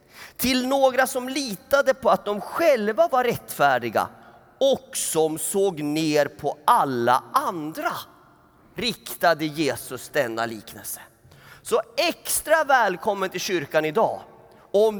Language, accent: Swedish, native